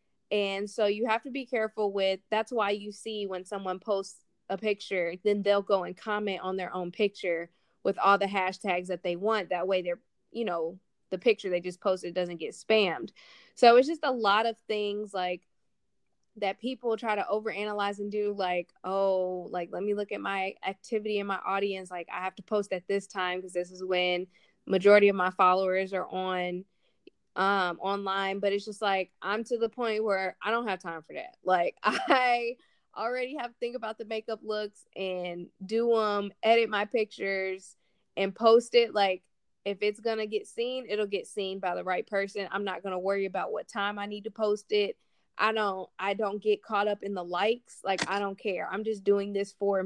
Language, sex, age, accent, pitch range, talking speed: English, female, 20-39, American, 190-215 Hz, 205 wpm